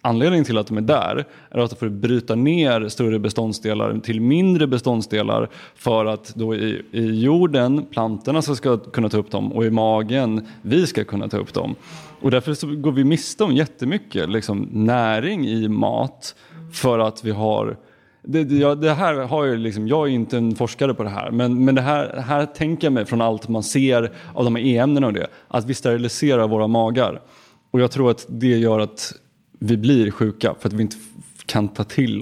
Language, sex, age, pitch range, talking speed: Swedish, male, 20-39, 110-135 Hz, 205 wpm